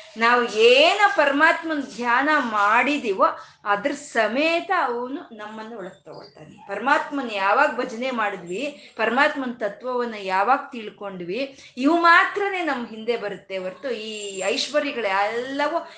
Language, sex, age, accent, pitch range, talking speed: Kannada, female, 20-39, native, 215-295 Hz, 105 wpm